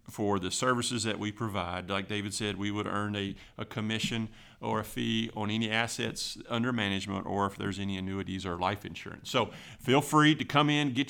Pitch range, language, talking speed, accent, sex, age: 105-140 Hz, English, 205 wpm, American, male, 50-69